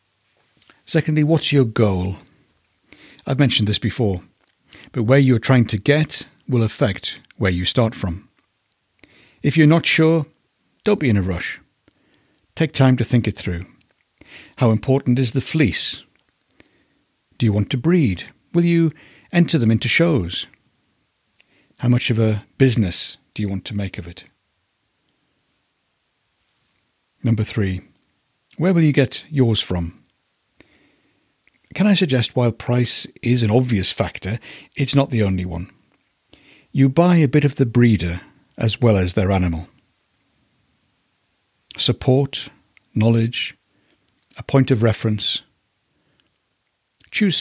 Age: 60-79